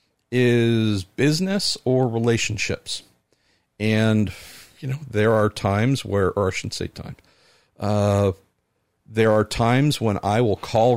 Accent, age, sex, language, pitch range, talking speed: American, 50-69, male, English, 90-115 Hz, 130 wpm